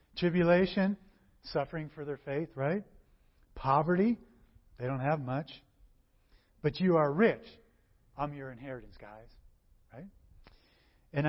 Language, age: English, 40-59